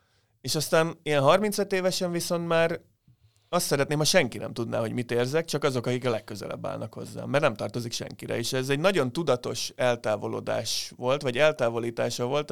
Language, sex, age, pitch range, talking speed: Hungarian, male, 30-49, 120-150 Hz, 175 wpm